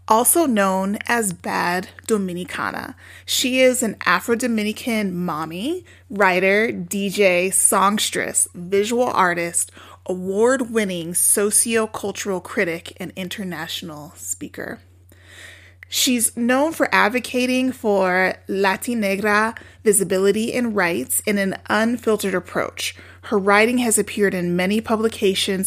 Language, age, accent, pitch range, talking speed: English, 30-49, American, 180-215 Hz, 105 wpm